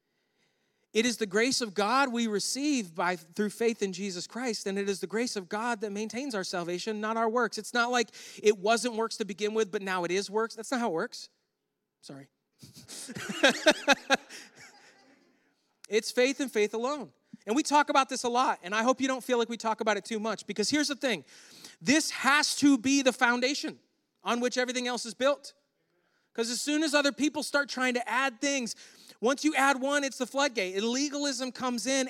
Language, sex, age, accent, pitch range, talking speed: English, male, 30-49, American, 210-275 Hz, 205 wpm